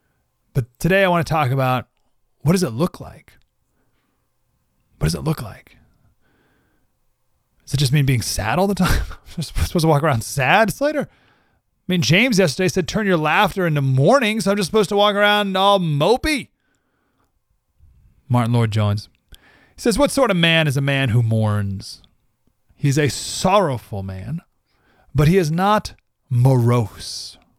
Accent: American